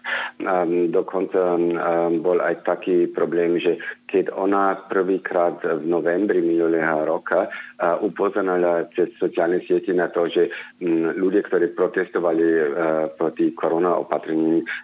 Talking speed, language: 100 wpm, Slovak